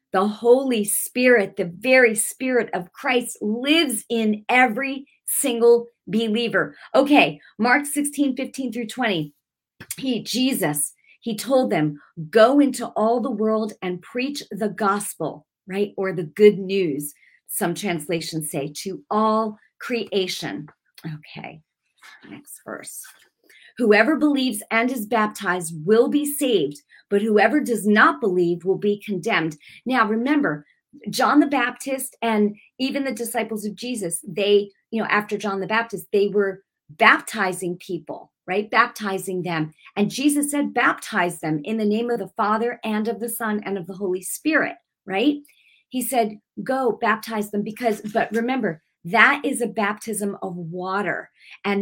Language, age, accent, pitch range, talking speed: English, 40-59, American, 195-245 Hz, 140 wpm